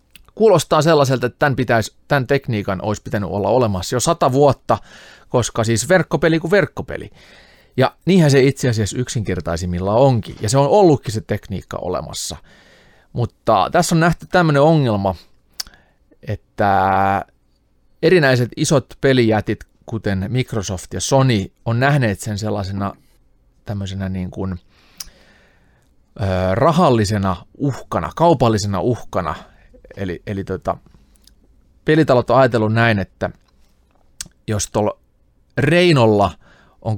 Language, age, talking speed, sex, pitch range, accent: Finnish, 30-49, 110 wpm, male, 95-130 Hz, native